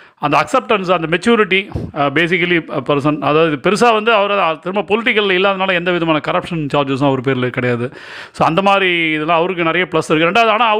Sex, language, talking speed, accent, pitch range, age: male, Tamil, 165 wpm, native, 150-200 Hz, 30-49